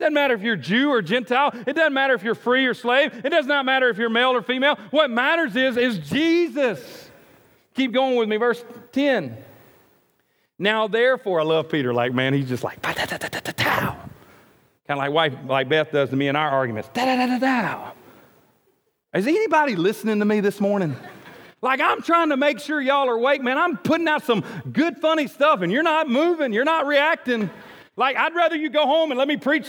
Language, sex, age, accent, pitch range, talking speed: English, male, 40-59, American, 220-295 Hz, 200 wpm